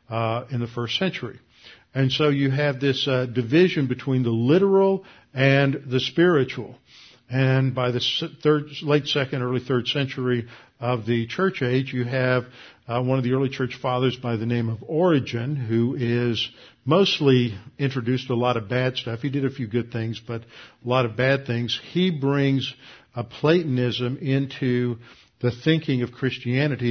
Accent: American